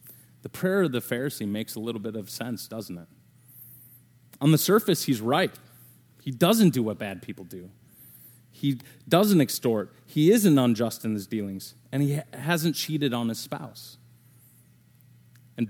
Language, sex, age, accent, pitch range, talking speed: English, male, 30-49, American, 115-135 Hz, 160 wpm